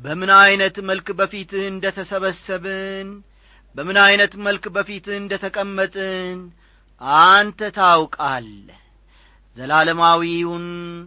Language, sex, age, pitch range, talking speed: English, male, 40-59, 175-225 Hz, 85 wpm